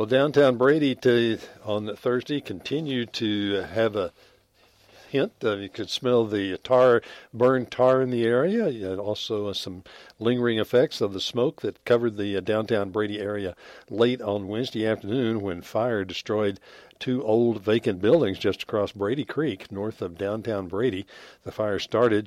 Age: 60-79